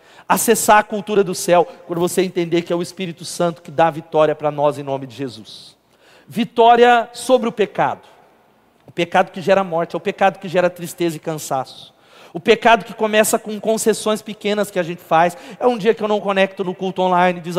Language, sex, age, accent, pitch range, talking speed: Portuguese, male, 40-59, Brazilian, 175-230 Hz, 210 wpm